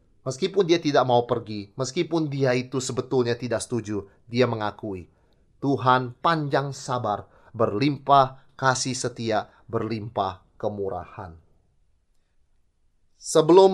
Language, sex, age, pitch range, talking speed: Indonesian, male, 30-49, 105-130 Hz, 95 wpm